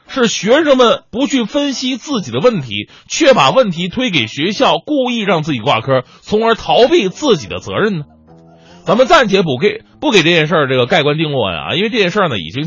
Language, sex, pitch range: Chinese, male, 135-215 Hz